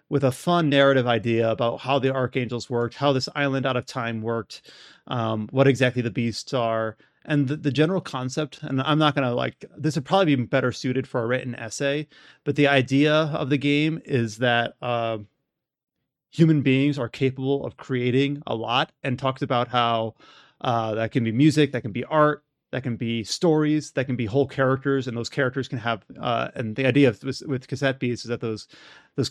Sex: male